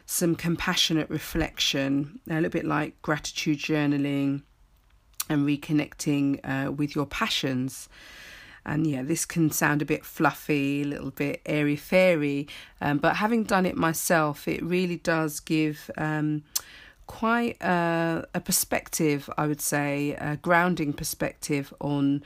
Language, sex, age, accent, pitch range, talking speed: English, female, 40-59, British, 145-175 Hz, 135 wpm